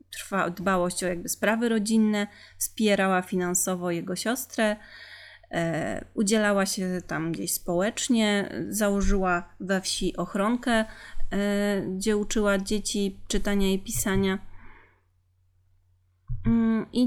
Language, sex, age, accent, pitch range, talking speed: Polish, female, 30-49, native, 175-220 Hz, 85 wpm